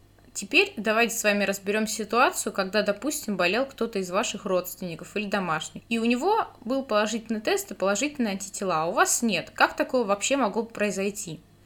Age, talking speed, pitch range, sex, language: 20-39, 170 wpm, 195-255 Hz, female, Russian